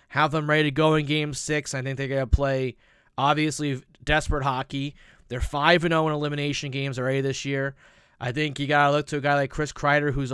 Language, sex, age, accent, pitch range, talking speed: English, male, 30-49, American, 130-160 Hz, 220 wpm